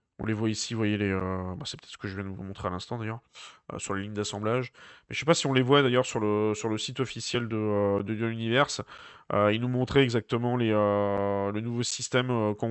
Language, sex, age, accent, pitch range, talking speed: French, male, 20-39, French, 100-125 Hz, 275 wpm